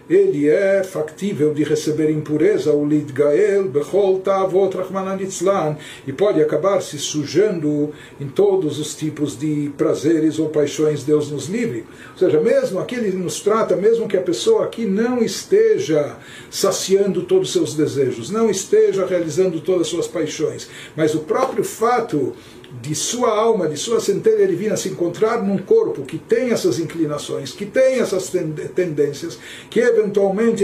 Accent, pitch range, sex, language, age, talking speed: Brazilian, 155-215 Hz, male, Portuguese, 60-79, 145 wpm